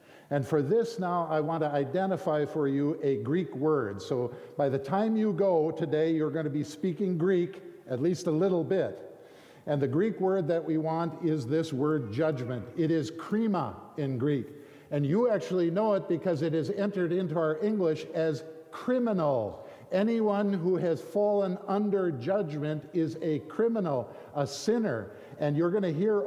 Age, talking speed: 50-69, 175 wpm